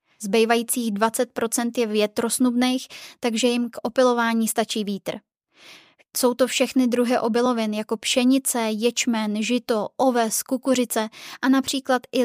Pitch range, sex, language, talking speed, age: 225-255 Hz, female, Czech, 120 wpm, 20-39